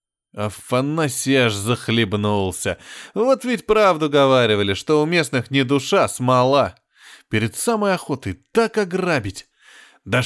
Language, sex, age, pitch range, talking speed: Russian, male, 20-39, 105-165 Hz, 125 wpm